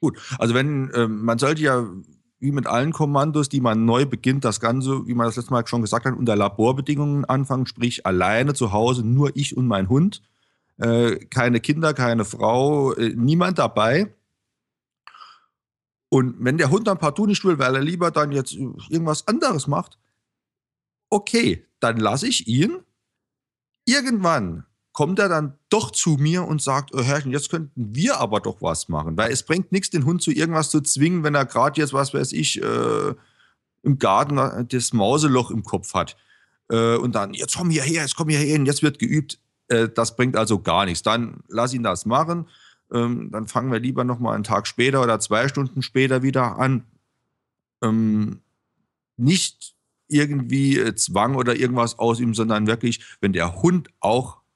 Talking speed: 175 wpm